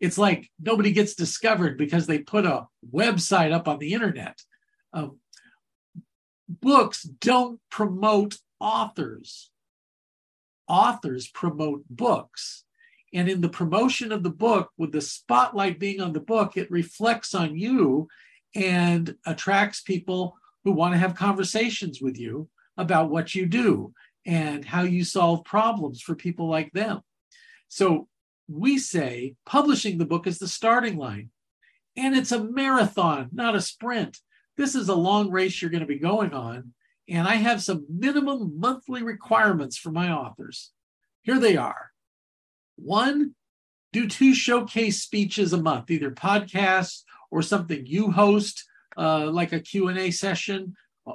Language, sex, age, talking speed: English, male, 50-69, 145 wpm